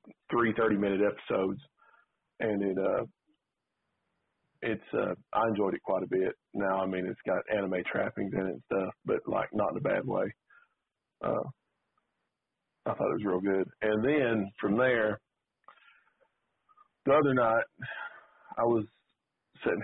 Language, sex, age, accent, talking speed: English, male, 40-59, American, 150 wpm